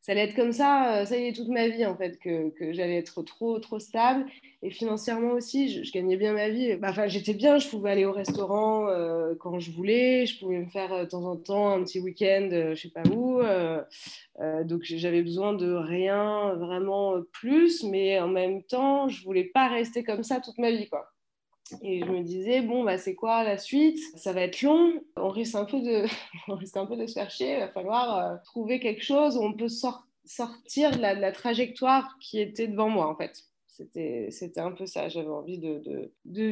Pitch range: 185-235 Hz